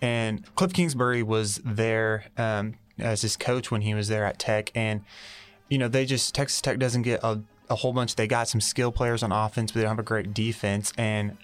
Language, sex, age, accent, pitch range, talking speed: English, male, 20-39, American, 100-115 Hz, 225 wpm